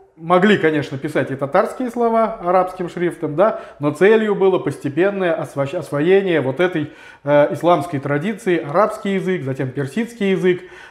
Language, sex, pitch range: Russian, male, 145-180 Hz